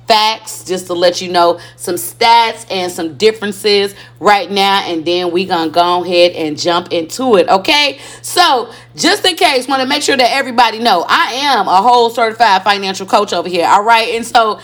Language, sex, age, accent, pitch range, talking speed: English, female, 30-49, American, 180-235 Hz, 195 wpm